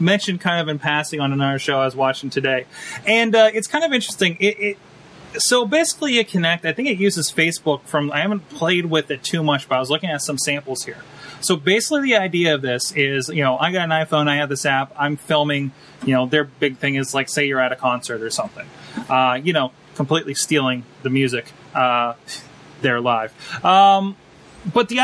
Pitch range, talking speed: 135-180 Hz, 220 wpm